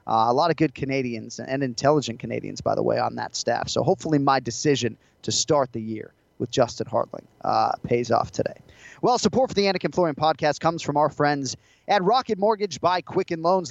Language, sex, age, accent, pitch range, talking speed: English, male, 30-49, American, 140-180 Hz, 205 wpm